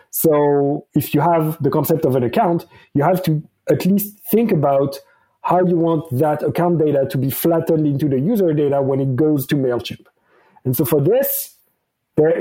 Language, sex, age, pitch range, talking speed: English, male, 40-59, 145-175 Hz, 190 wpm